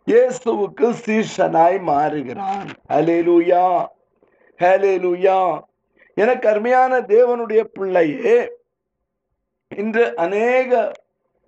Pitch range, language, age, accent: 215-275 Hz, Tamil, 50-69, native